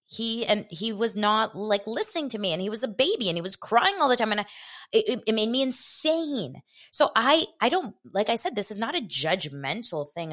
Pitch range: 150-210 Hz